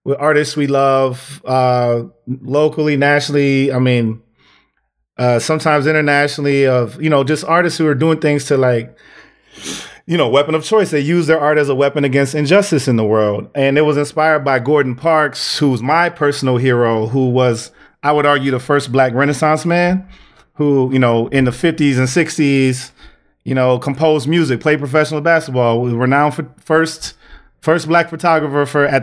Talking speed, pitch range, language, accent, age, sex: 175 wpm, 125-155 Hz, English, American, 30-49, male